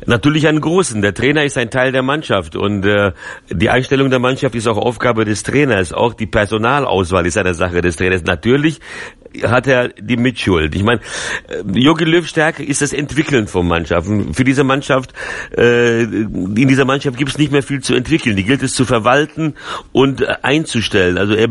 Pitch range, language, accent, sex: 110-135 Hz, German, German, male